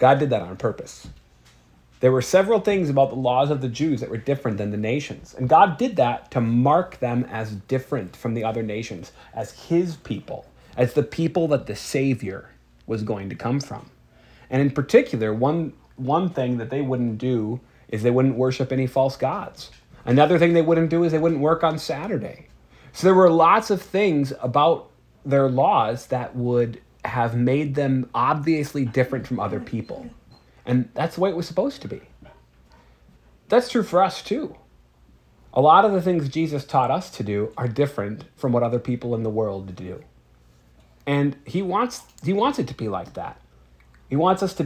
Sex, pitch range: male, 110-150 Hz